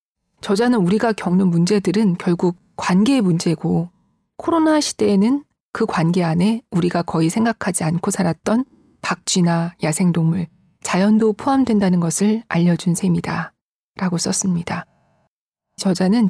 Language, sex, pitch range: Korean, female, 175-230 Hz